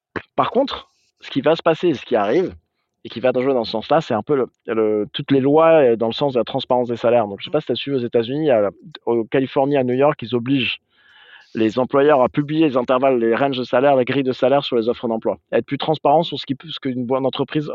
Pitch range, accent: 120-155 Hz, French